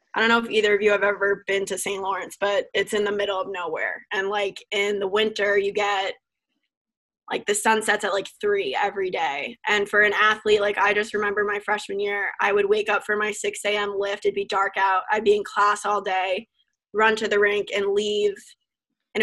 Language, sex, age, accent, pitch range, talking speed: English, female, 20-39, American, 200-215 Hz, 230 wpm